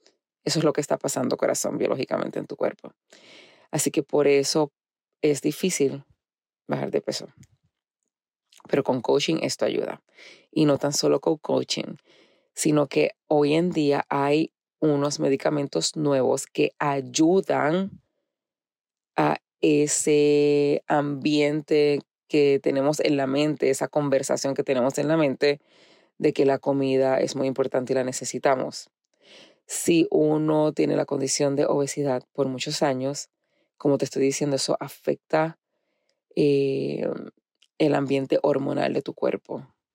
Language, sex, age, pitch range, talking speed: Spanish, female, 30-49, 135-155 Hz, 135 wpm